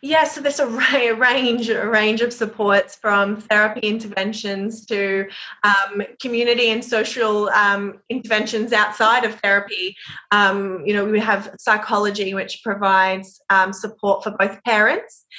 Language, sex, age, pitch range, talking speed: English, female, 20-39, 200-235 Hz, 135 wpm